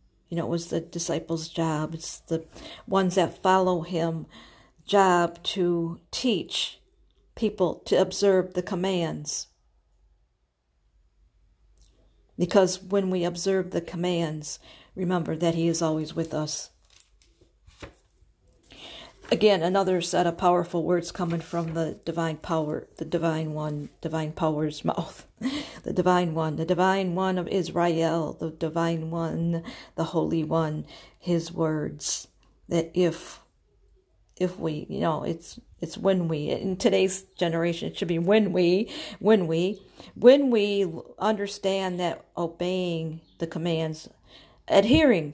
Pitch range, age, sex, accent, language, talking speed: 160-185 Hz, 50-69, female, American, English, 125 wpm